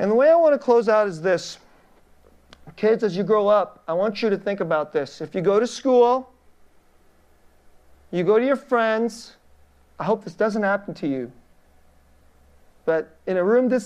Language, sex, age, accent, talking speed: English, male, 40-59, American, 190 wpm